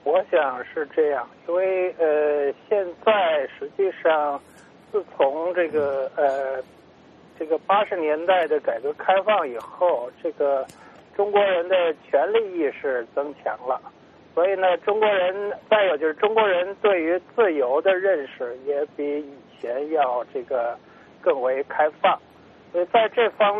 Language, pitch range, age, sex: English, 155-245 Hz, 50-69, male